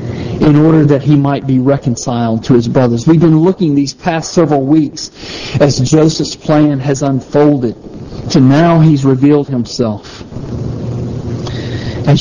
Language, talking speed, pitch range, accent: English, 140 wpm, 120-155 Hz, American